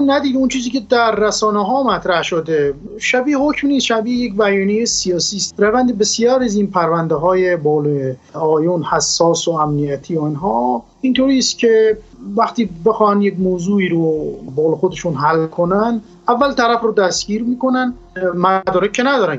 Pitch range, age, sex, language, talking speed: 175-230 Hz, 30-49, male, Persian, 145 wpm